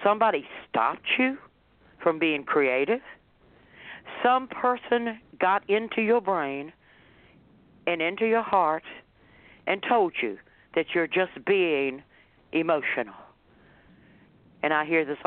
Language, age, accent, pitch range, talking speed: English, 60-79, American, 155-225 Hz, 110 wpm